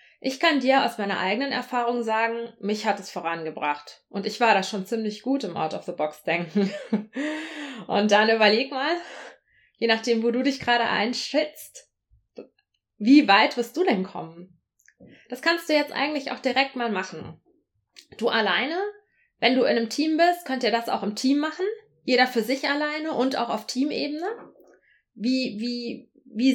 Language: German